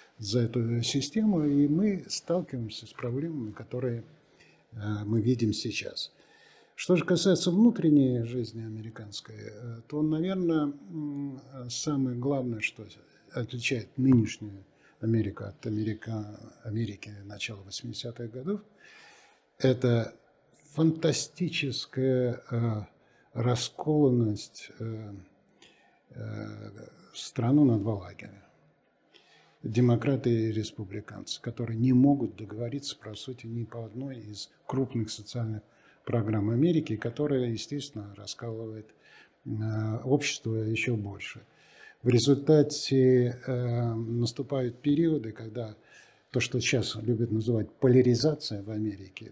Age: 50-69